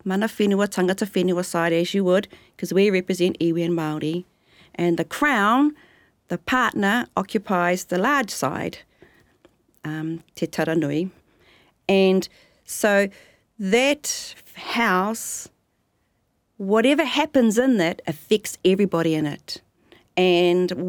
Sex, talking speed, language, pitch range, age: female, 110 wpm, English, 170-205 Hz, 40-59